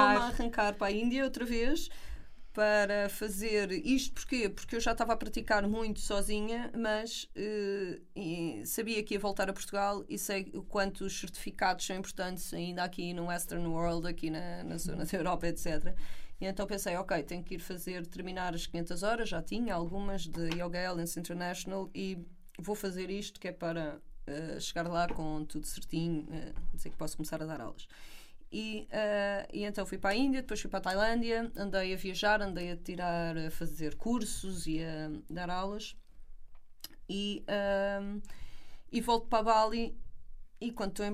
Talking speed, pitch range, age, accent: 180 wpm, 175-220 Hz, 20-39, Brazilian